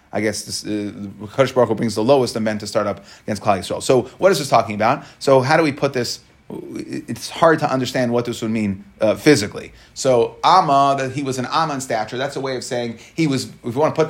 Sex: male